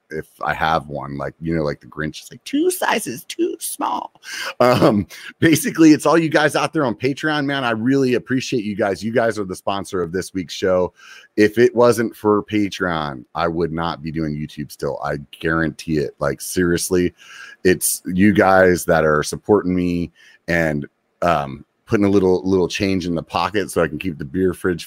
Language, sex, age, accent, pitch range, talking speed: English, male, 30-49, American, 80-110 Hz, 200 wpm